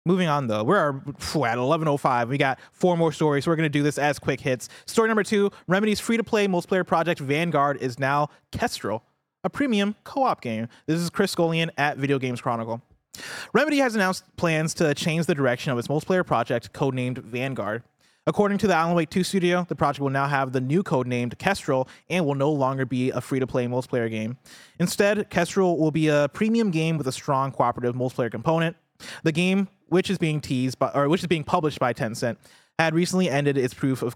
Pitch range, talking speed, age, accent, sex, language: 130-175 Hz, 200 wpm, 20-39, American, male, English